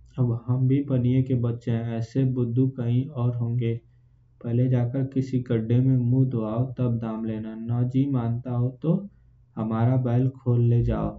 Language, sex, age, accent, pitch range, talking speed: Hindi, male, 20-39, native, 115-135 Hz, 170 wpm